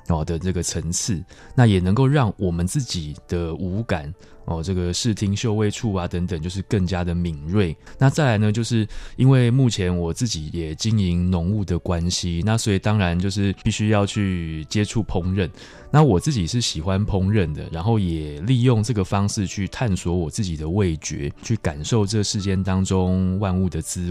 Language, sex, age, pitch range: Chinese, male, 20-39, 90-110 Hz